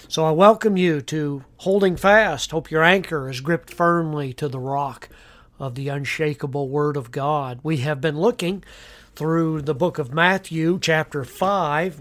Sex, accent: male, American